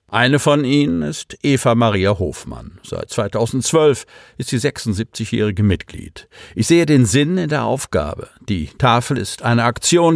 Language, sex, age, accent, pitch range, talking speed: German, male, 50-69, German, 100-135 Hz, 140 wpm